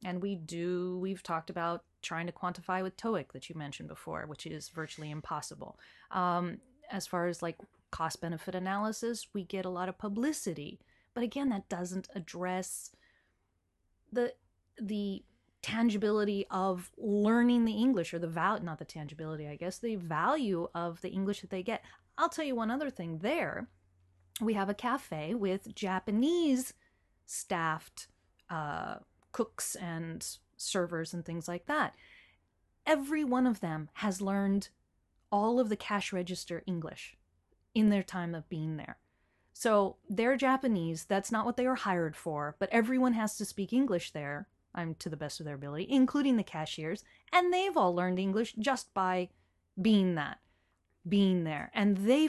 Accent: American